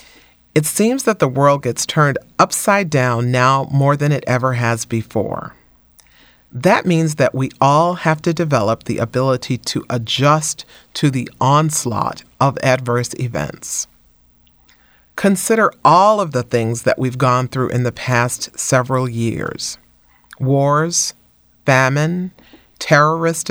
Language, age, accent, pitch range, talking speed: English, 40-59, American, 120-160 Hz, 130 wpm